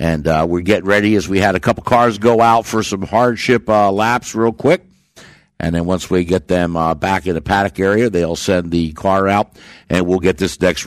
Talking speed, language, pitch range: 230 wpm, English, 100-125 Hz